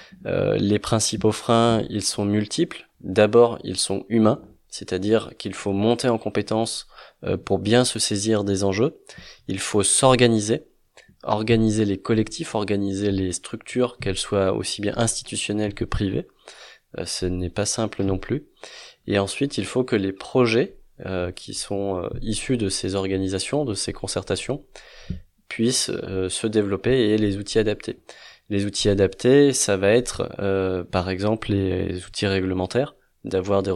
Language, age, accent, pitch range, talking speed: French, 20-39, French, 95-115 Hz, 160 wpm